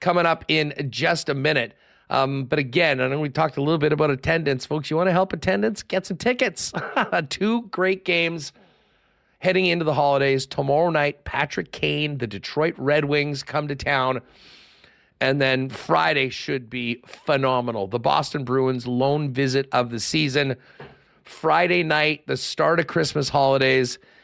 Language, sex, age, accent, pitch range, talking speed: English, male, 40-59, American, 135-170 Hz, 165 wpm